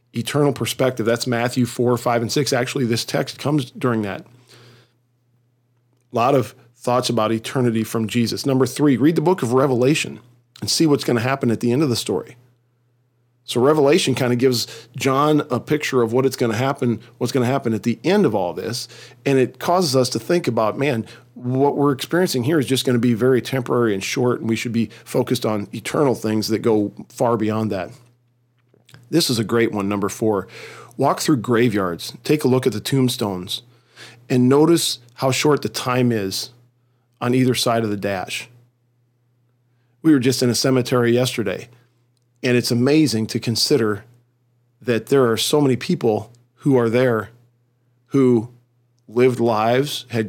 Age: 40-59